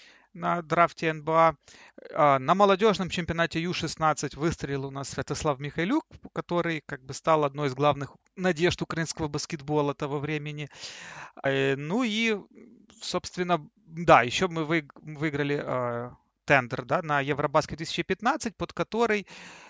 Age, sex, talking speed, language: 30-49, male, 115 wpm, Russian